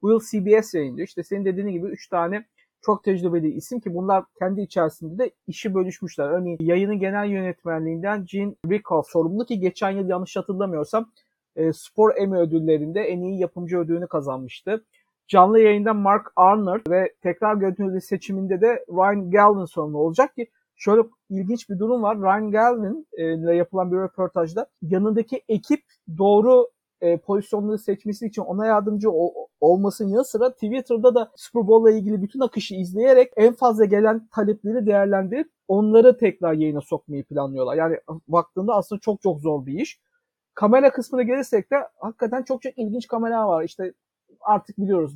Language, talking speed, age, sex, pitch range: Turkish, 155 wpm, 50-69, male, 180-230 Hz